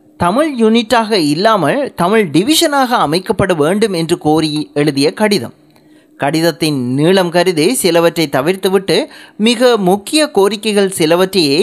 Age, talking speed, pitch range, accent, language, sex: 30-49, 105 wpm, 160-225 Hz, native, Tamil, male